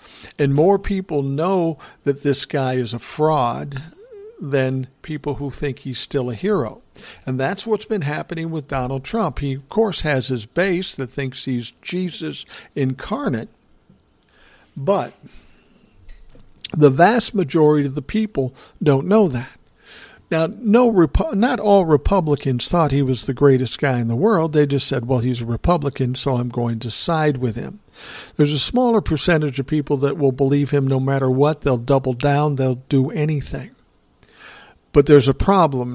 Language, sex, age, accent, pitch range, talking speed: English, male, 60-79, American, 130-160 Hz, 165 wpm